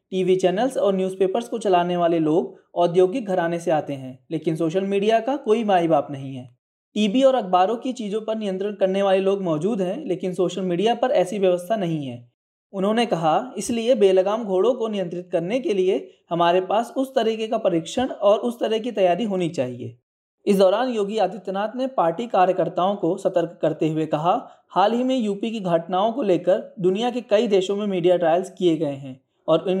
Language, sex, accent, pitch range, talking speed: Hindi, male, native, 175-220 Hz, 195 wpm